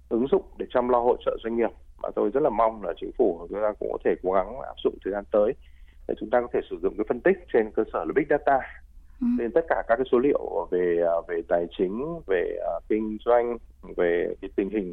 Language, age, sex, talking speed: Vietnamese, 20-39, male, 250 wpm